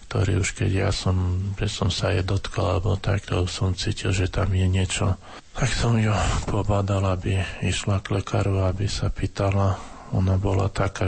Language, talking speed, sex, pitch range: Slovak, 175 wpm, male, 95-105 Hz